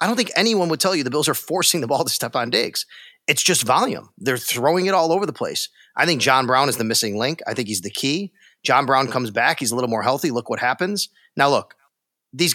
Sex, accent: male, American